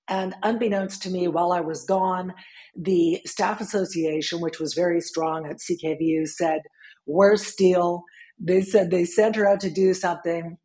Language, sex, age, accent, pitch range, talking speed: English, female, 50-69, American, 165-210 Hz, 165 wpm